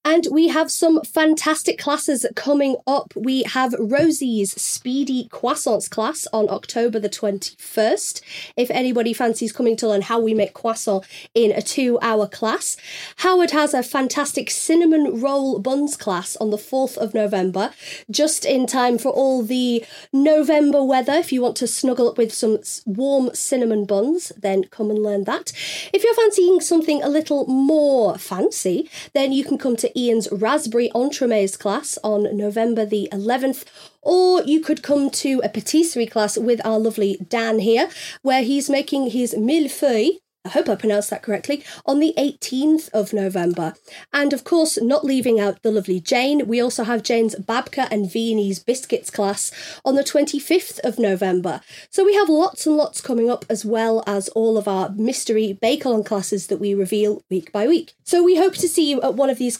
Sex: female